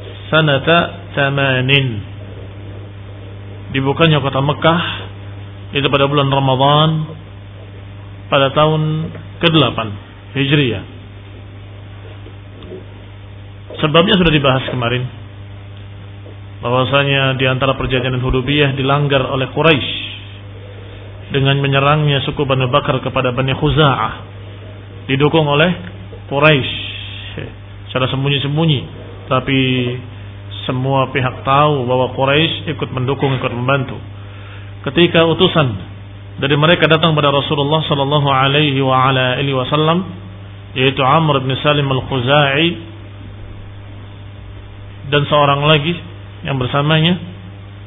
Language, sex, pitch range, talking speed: Indonesian, male, 100-140 Hz, 85 wpm